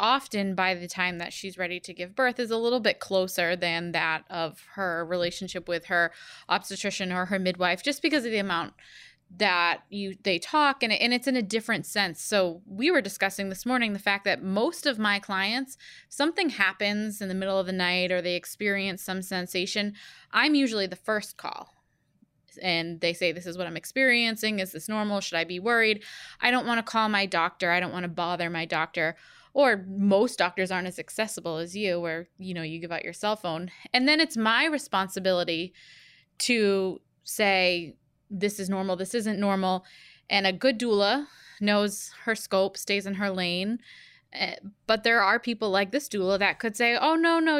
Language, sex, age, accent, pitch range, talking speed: English, female, 20-39, American, 180-225 Hz, 195 wpm